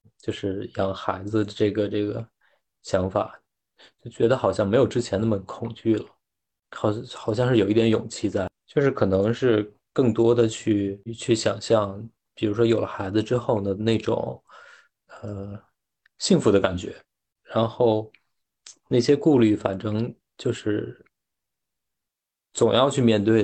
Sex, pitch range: male, 100-115 Hz